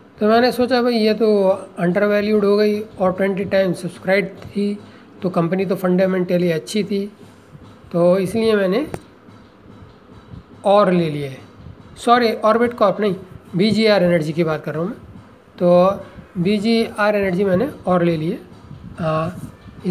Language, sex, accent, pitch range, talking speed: Hindi, male, native, 170-205 Hz, 140 wpm